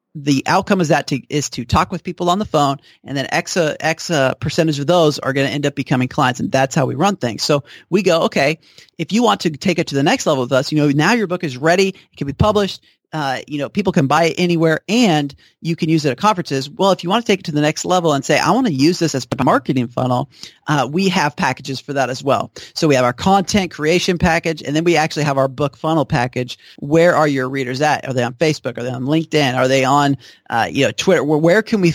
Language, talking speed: English, 275 wpm